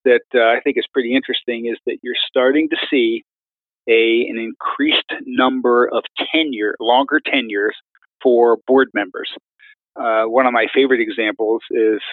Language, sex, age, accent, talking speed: English, male, 40-59, American, 155 wpm